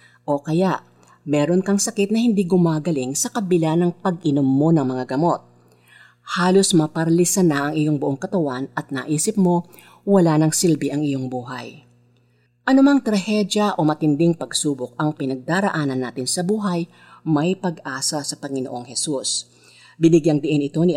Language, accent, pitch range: Filipino, native, 135-190 Hz